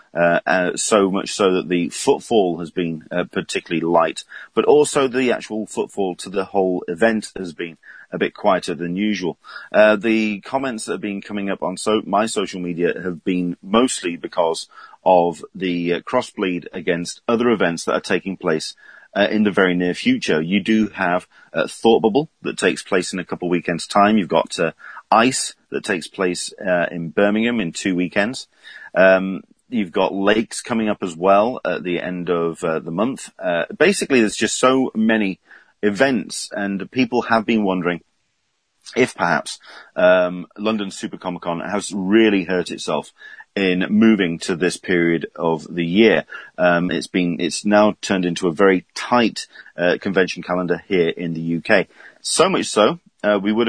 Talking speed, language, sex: 180 wpm, English, male